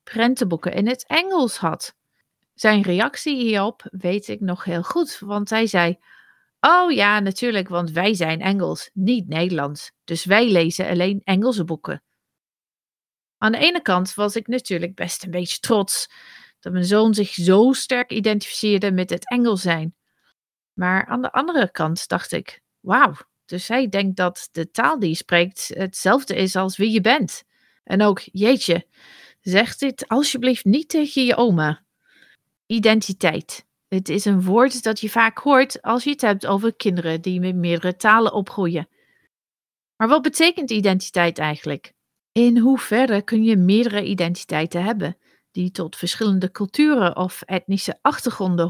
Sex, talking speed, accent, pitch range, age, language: female, 155 wpm, Dutch, 180-230 Hz, 40-59, Dutch